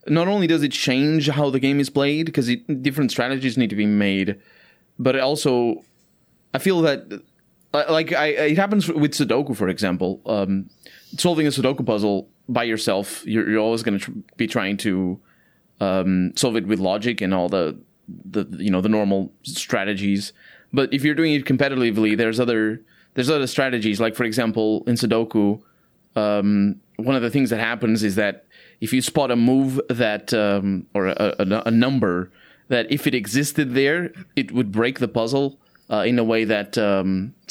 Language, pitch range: English, 105-135 Hz